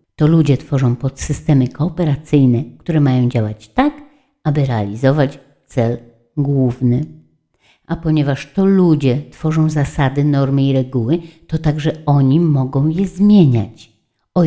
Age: 50-69